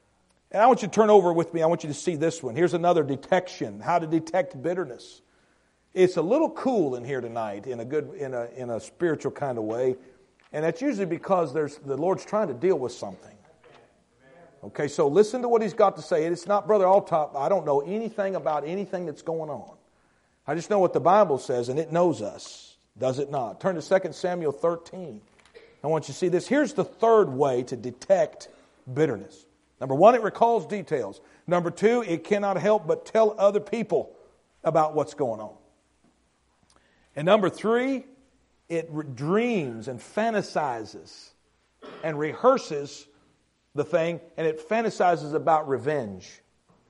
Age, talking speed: 50-69, 180 wpm